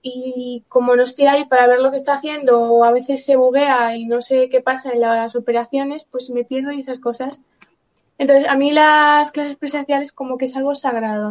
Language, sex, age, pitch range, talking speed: Spanish, female, 20-39, 240-270 Hz, 220 wpm